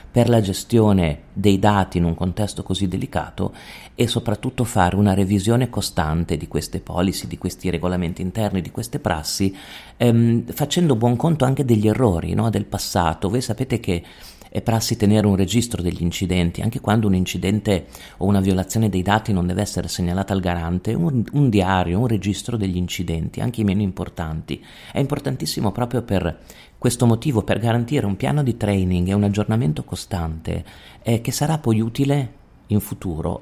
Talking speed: 170 wpm